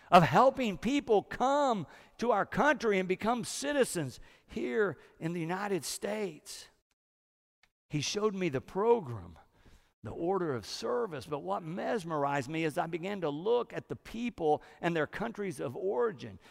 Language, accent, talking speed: English, American, 150 wpm